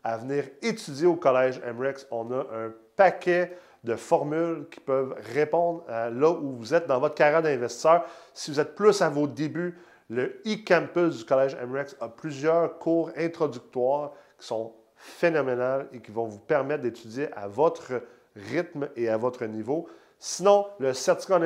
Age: 40-59